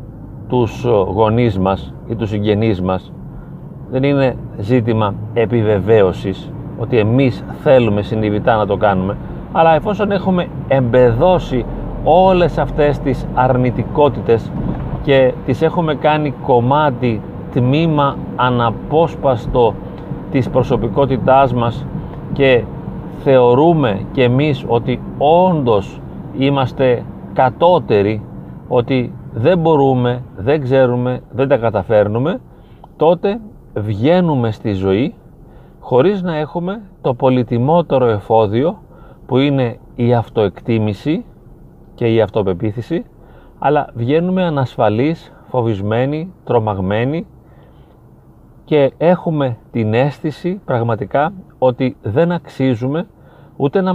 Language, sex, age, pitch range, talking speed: Greek, male, 40-59, 115-150 Hz, 95 wpm